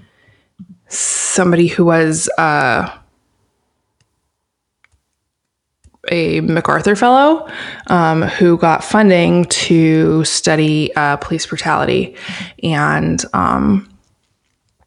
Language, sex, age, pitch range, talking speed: English, female, 20-39, 155-185 Hz, 75 wpm